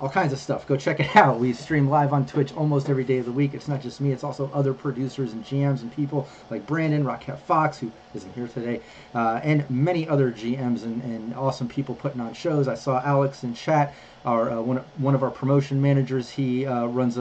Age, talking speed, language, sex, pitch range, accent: 30-49, 235 wpm, English, male, 120-140 Hz, American